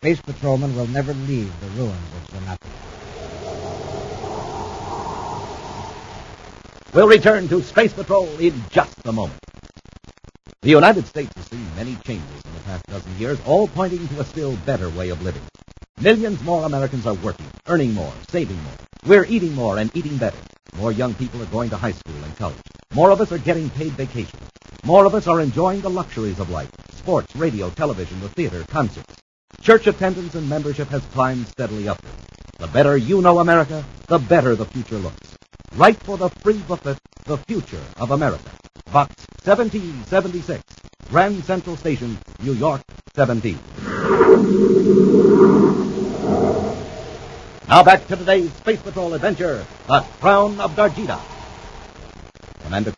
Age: 50-69